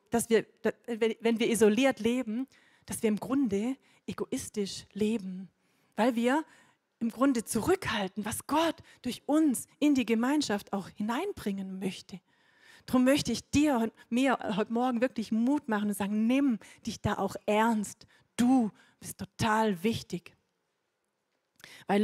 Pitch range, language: 215-260 Hz, German